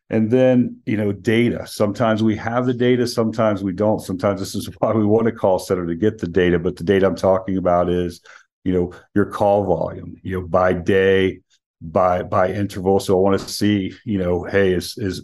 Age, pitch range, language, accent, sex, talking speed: 40-59, 90-105 Hz, English, American, male, 215 wpm